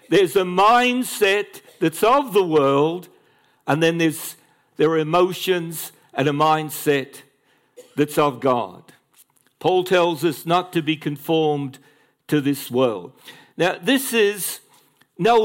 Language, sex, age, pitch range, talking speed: English, male, 60-79, 155-215 Hz, 130 wpm